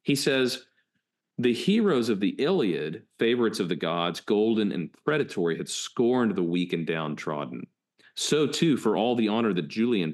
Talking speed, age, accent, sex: 165 wpm, 40-59, American, male